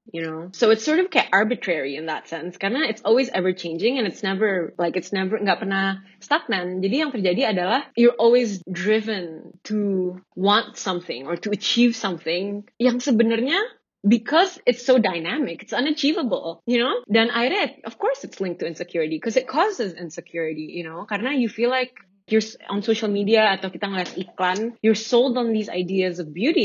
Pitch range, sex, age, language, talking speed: 175-220 Hz, female, 20-39, Indonesian, 185 wpm